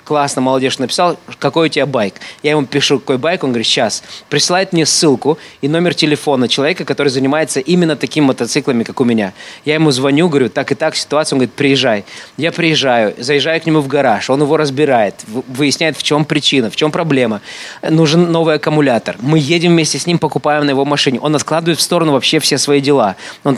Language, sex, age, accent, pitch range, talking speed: Russian, male, 20-39, native, 135-160 Hz, 200 wpm